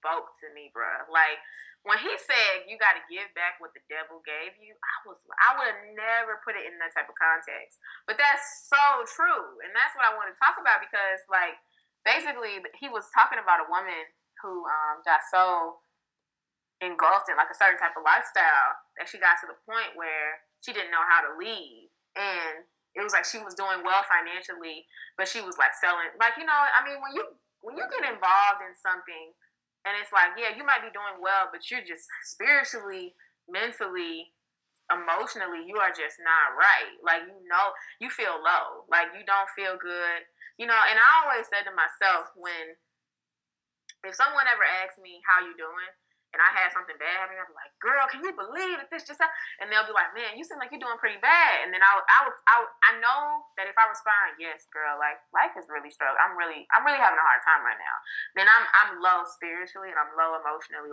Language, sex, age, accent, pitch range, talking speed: English, female, 20-39, American, 170-250 Hz, 215 wpm